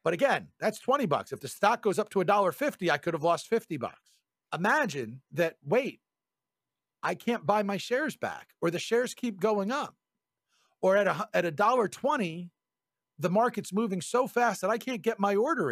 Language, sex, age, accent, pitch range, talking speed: English, male, 50-69, American, 170-230 Hz, 185 wpm